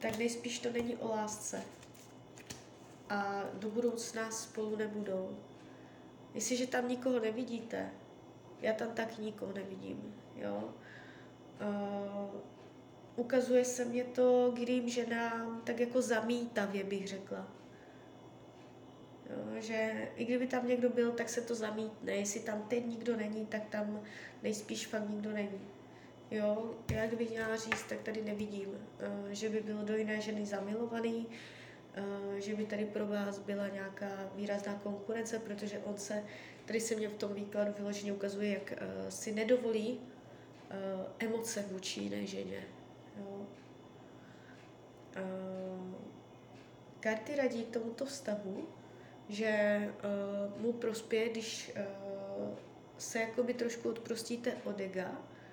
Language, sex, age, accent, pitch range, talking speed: Czech, female, 20-39, native, 200-230 Hz, 120 wpm